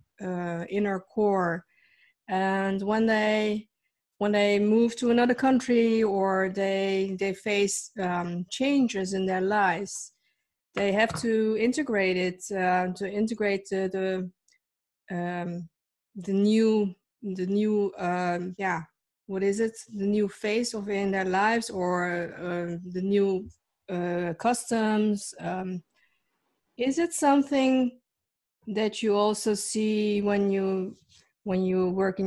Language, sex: English, female